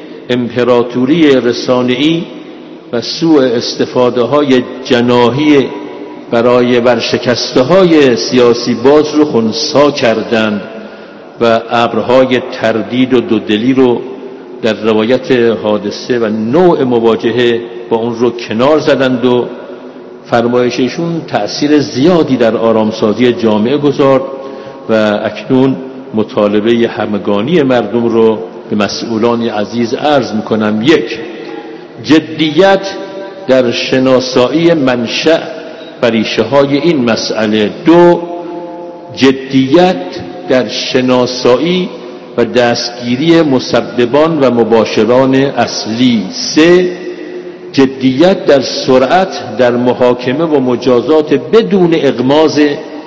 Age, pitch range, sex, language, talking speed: 60-79, 120-150 Hz, male, English, 90 wpm